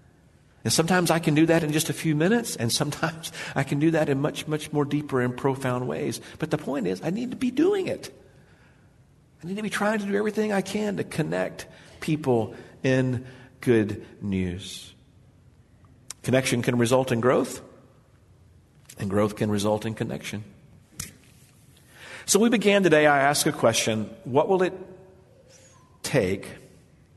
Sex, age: male, 50-69